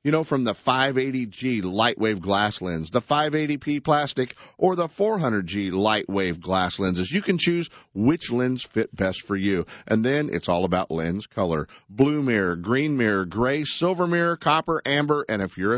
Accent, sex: American, male